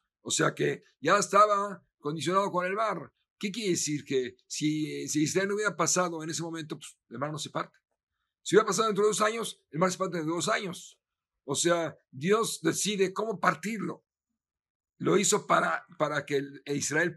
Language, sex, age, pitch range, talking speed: Spanish, male, 50-69, 140-180 Hz, 185 wpm